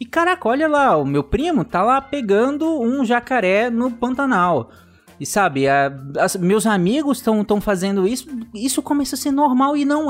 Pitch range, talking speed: 155-240 Hz, 180 wpm